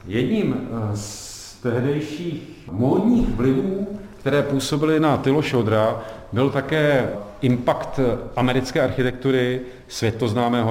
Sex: male